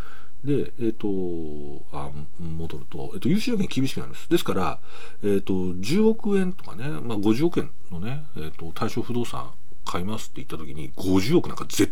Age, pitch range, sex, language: 40-59, 80-135 Hz, male, Japanese